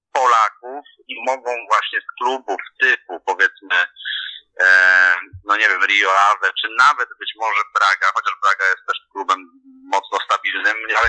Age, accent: 40-59, native